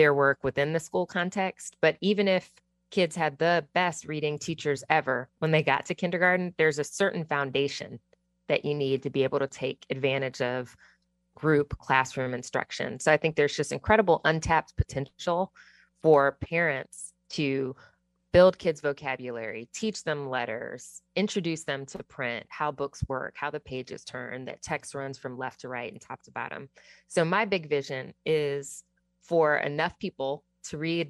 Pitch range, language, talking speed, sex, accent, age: 135-165 Hz, English, 170 wpm, female, American, 20-39